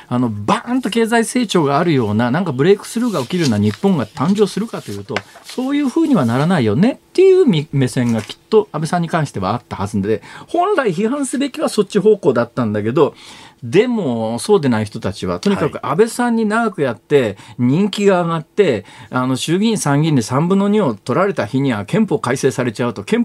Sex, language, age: male, Japanese, 40-59